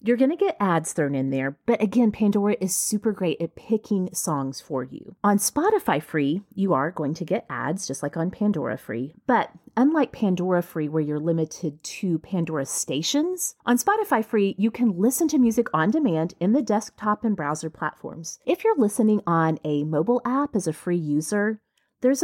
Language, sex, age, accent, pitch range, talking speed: English, female, 30-49, American, 160-230 Hz, 190 wpm